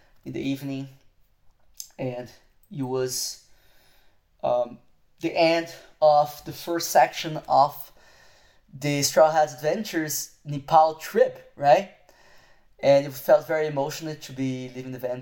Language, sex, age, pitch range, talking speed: English, male, 20-39, 125-145 Hz, 120 wpm